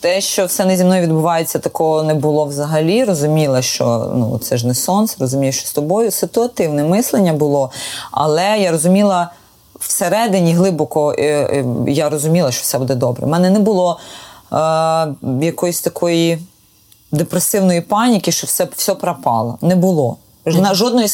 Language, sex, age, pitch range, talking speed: Ukrainian, female, 20-39, 155-200 Hz, 155 wpm